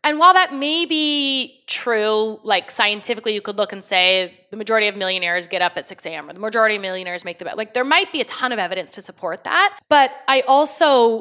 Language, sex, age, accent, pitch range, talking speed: English, female, 20-39, American, 190-270 Hz, 235 wpm